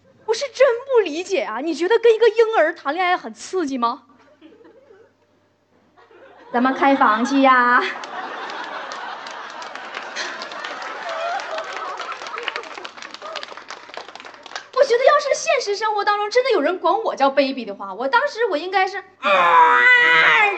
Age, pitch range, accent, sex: 30-49, 235-390 Hz, native, female